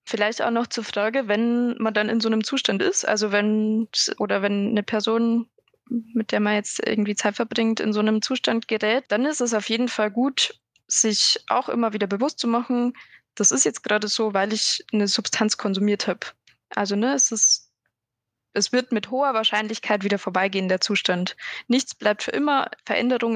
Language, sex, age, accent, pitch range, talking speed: German, female, 20-39, German, 210-240 Hz, 190 wpm